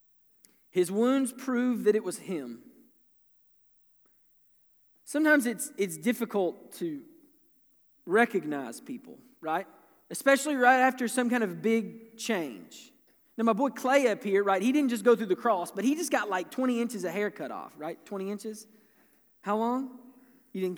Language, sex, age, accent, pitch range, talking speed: English, male, 20-39, American, 195-290 Hz, 160 wpm